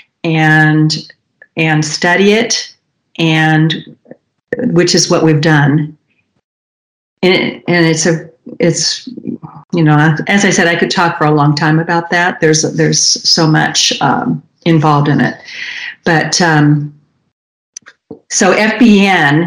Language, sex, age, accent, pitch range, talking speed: English, female, 50-69, American, 155-175 Hz, 130 wpm